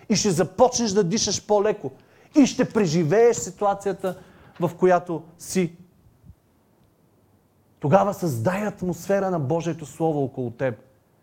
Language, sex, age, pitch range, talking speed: Bulgarian, male, 30-49, 135-195 Hz, 110 wpm